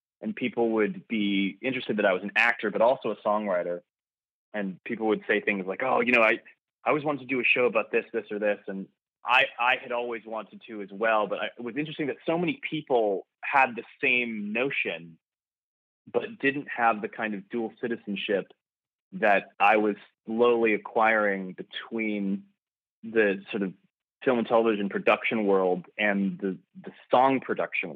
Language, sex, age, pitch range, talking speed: English, male, 20-39, 100-120 Hz, 180 wpm